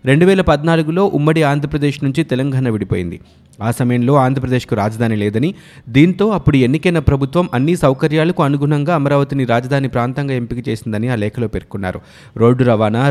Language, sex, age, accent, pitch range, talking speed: Telugu, male, 20-39, native, 120-150 Hz, 135 wpm